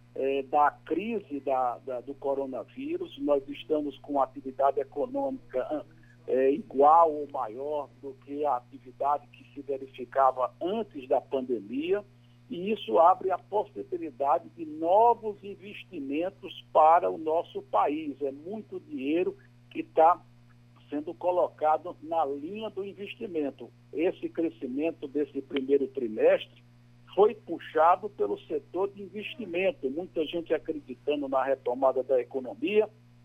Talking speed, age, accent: 115 wpm, 60-79, Brazilian